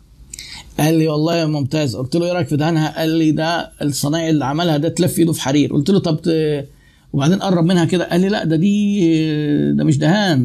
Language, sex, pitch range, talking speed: Arabic, male, 130-165 Hz, 220 wpm